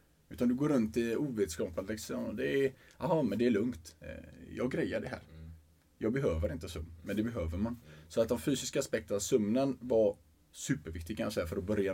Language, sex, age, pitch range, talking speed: Swedish, male, 20-39, 85-105 Hz, 180 wpm